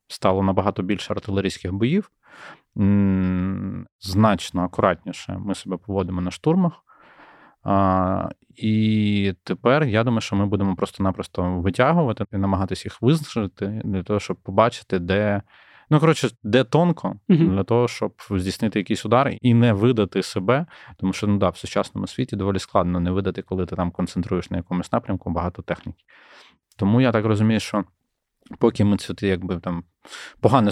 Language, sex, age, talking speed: Ukrainian, male, 20-39, 140 wpm